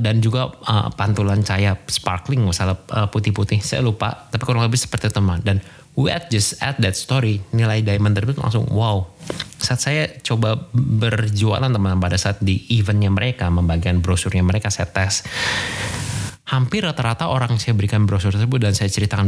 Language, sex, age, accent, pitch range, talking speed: Indonesian, male, 20-39, native, 100-125 Hz, 160 wpm